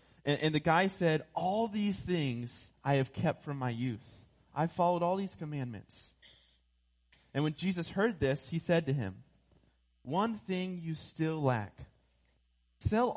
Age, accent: 20-39, American